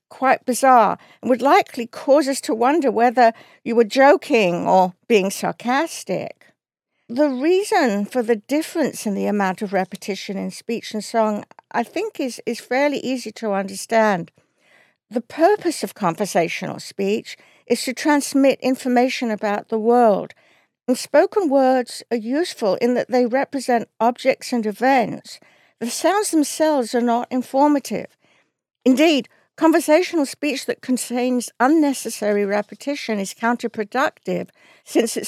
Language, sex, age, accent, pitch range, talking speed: English, female, 60-79, British, 215-275 Hz, 135 wpm